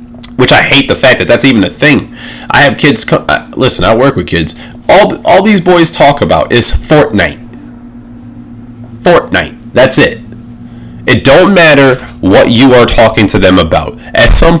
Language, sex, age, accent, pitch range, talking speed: English, male, 30-49, American, 115-125 Hz, 180 wpm